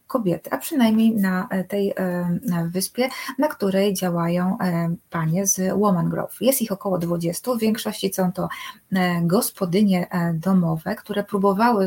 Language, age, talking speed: Polish, 20-39, 125 wpm